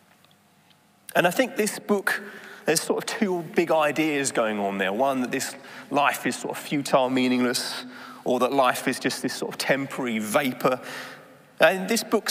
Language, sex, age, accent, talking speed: English, male, 30-49, British, 175 wpm